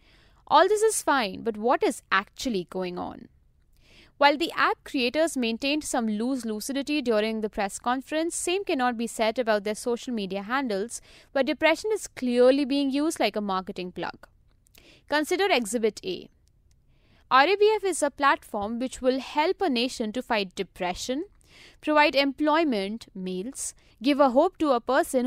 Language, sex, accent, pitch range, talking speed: English, female, Indian, 220-300 Hz, 155 wpm